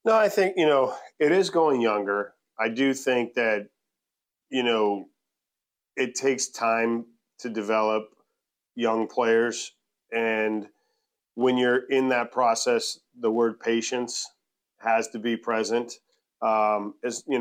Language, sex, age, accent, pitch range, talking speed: English, male, 40-59, American, 110-125 Hz, 130 wpm